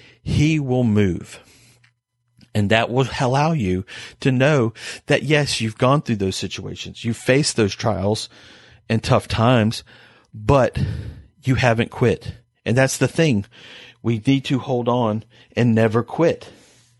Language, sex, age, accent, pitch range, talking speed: English, male, 40-59, American, 110-140 Hz, 140 wpm